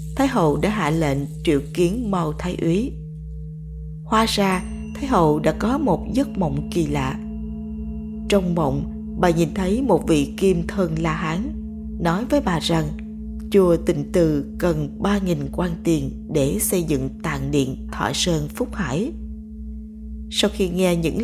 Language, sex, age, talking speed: Vietnamese, female, 20-39, 160 wpm